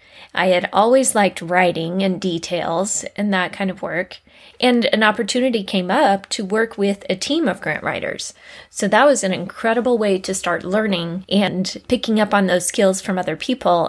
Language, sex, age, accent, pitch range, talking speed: English, female, 20-39, American, 185-225 Hz, 185 wpm